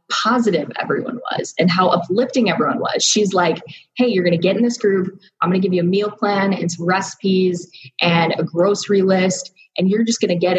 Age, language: 20-39, English